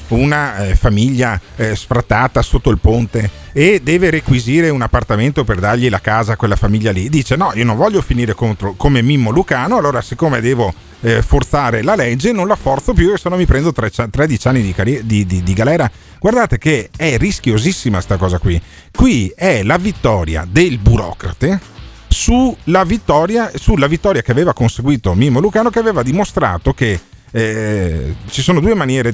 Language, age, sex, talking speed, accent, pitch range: Italian, 40-59, male, 170 wpm, native, 100-150 Hz